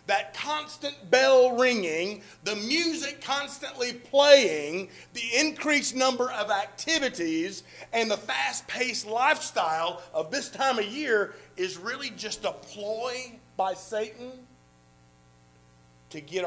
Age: 40-59